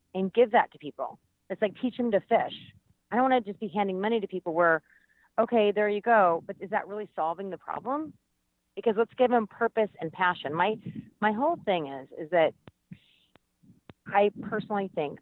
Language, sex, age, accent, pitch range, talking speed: English, female, 40-59, American, 160-210 Hz, 195 wpm